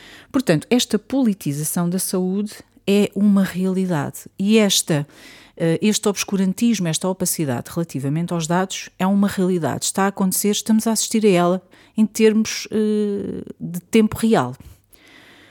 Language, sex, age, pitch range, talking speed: Portuguese, female, 40-59, 155-205 Hz, 125 wpm